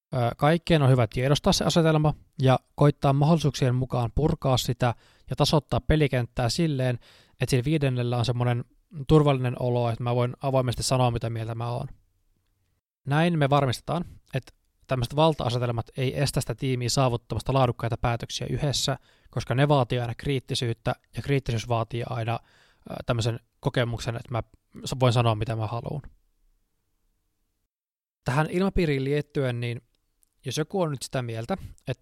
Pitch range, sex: 120-145 Hz, male